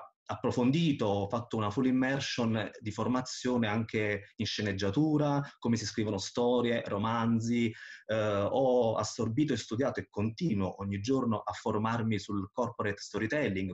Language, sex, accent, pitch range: Italian, male, native, 100-130 Hz